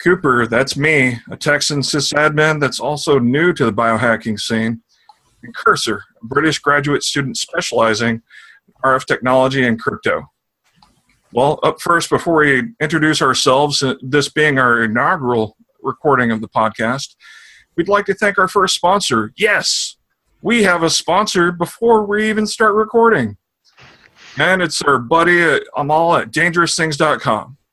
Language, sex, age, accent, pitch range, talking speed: English, male, 40-59, American, 125-165 Hz, 140 wpm